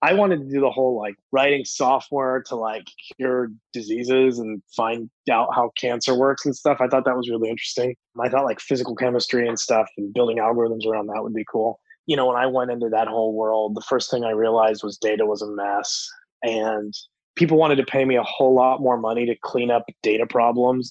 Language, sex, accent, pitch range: English, male, American, 110-130 Hz